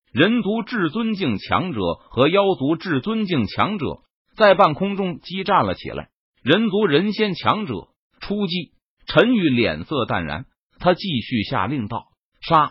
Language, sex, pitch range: Chinese, male, 145-205 Hz